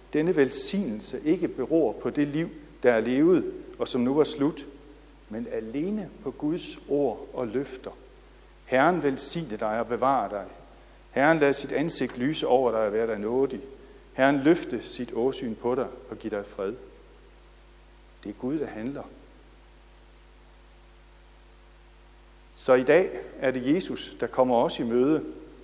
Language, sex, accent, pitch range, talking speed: Danish, male, native, 130-210 Hz, 150 wpm